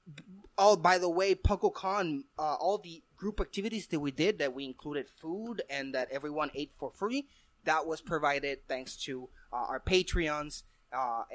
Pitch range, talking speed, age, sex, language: 150-215 Hz, 170 wpm, 20-39, male, English